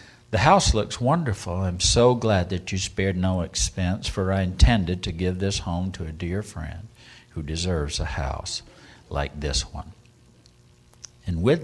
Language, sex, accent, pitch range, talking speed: English, male, American, 80-95 Hz, 165 wpm